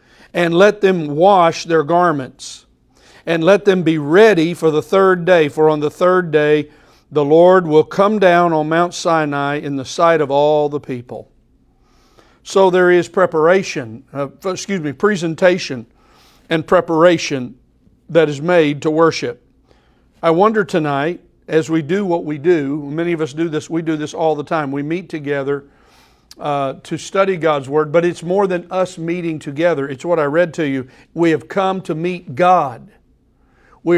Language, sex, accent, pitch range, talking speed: English, male, American, 150-180 Hz, 175 wpm